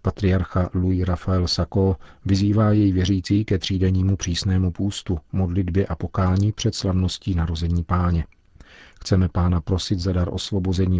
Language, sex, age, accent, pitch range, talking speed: Czech, male, 40-59, native, 85-95 Hz, 130 wpm